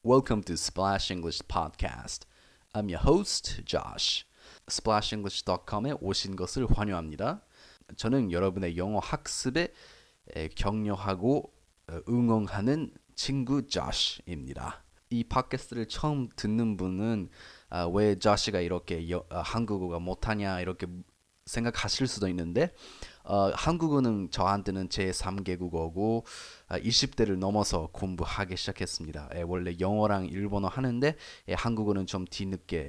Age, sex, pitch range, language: 20-39, male, 90-115 Hz, Korean